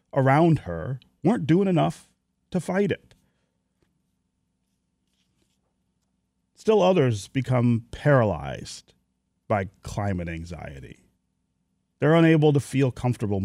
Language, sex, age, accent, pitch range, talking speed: English, male, 40-59, American, 95-140 Hz, 90 wpm